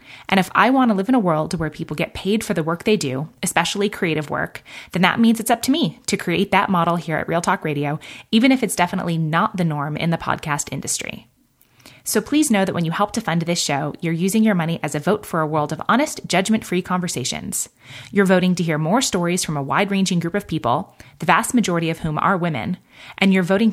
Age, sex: 20-39, female